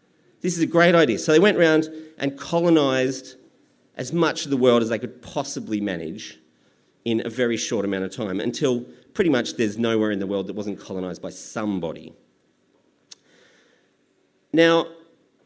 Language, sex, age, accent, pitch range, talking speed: English, male, 40-59, Australian, 105-165 Hz, 165 wpm